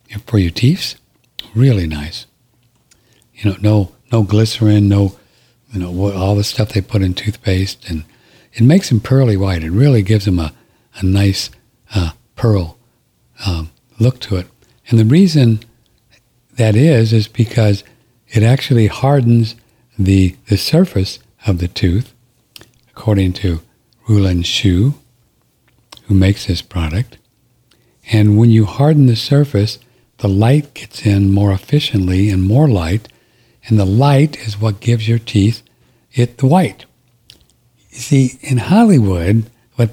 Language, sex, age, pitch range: English, male, 60-79, 100-120 Hz